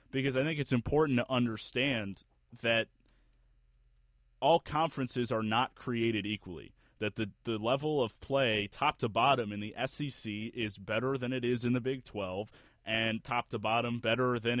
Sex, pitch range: male, 105-125 Hz